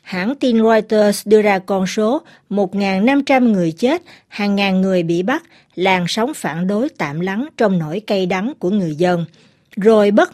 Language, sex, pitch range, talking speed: Vietnamese, female, 180-245 Hz, 175 wpm